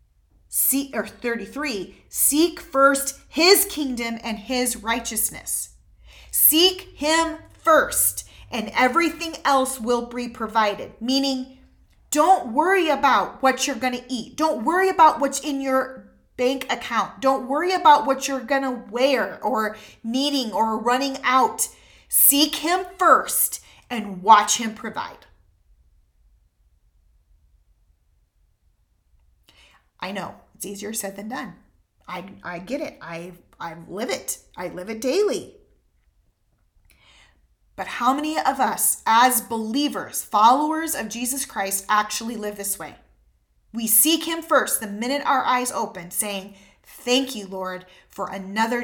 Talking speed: 130 wpm